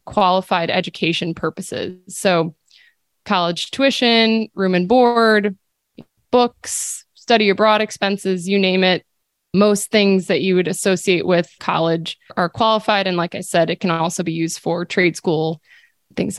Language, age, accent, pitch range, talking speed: English, 20-39, American, 180-210 Hz, 145 wpm